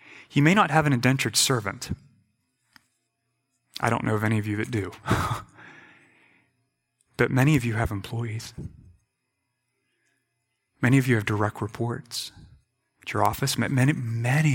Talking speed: 135 wpm